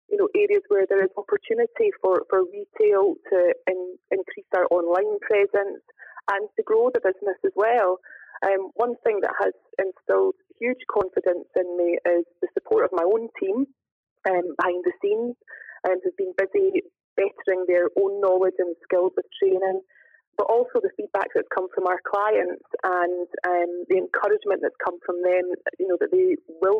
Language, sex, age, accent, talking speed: English, female, 20-39, British, 175 wpm